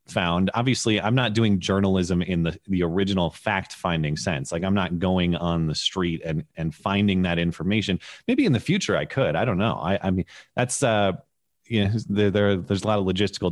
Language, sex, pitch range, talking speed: English, male, 85-105 Hz, 215 wpm